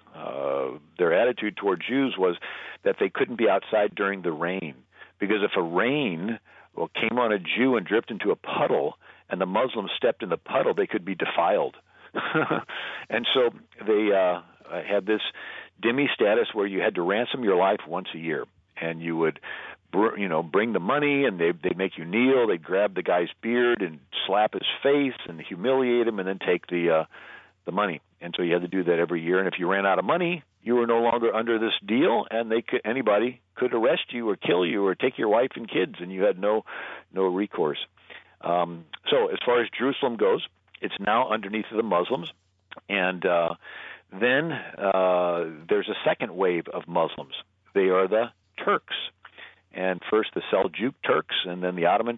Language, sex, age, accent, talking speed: English, male, 50-69, American, 195 wpm